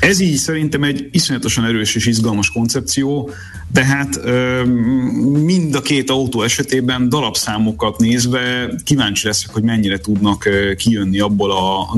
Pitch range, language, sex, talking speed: 105-125 Hz, Hungarian, male, 140 wpm